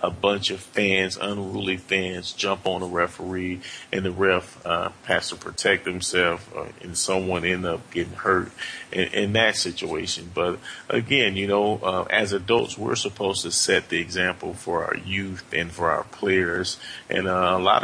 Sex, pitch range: male, 90-95 Hz